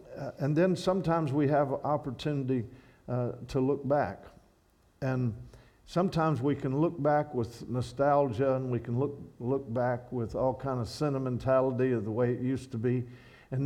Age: 50-69